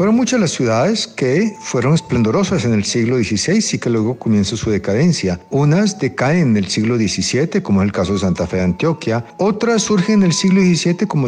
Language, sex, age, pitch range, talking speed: Spanish, male, 50-69, 100-145 Hz, 210 wpm